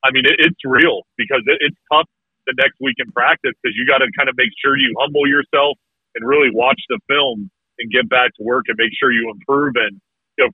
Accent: American